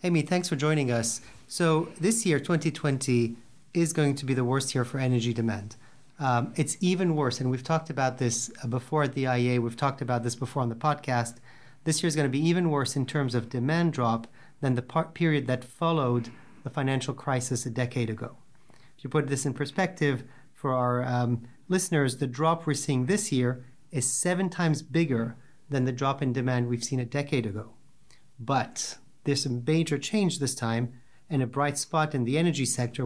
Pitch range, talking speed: 125-155 Hz, 200 wpm